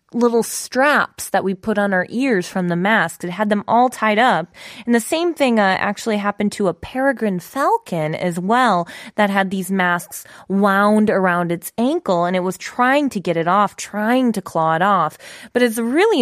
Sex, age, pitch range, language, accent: female, 20-39, 180-235 Hz, Korean, American